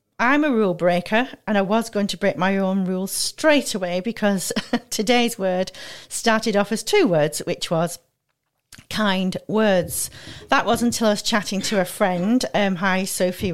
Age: 40-59